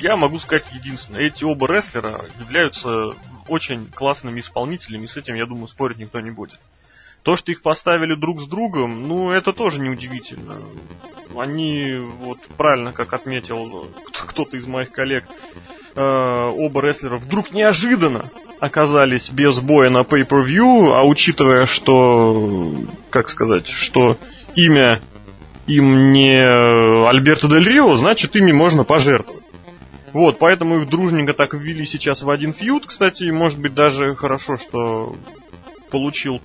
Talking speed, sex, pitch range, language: 140 wpm, male, 125-160 Hz, Russian